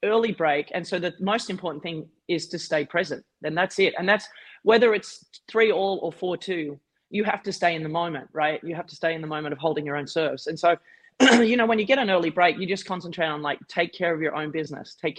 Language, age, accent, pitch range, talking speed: English, 30-49, Australian, 155-190 Hz, 260 wpm